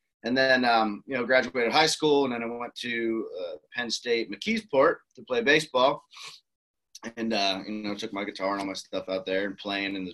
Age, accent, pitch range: 30-49, American, 95-120 Hz